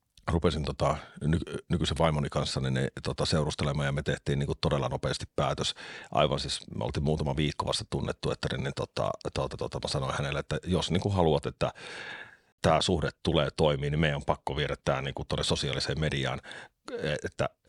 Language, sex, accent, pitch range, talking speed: Finnish, male, native, 70-85 Hz, 170 wpm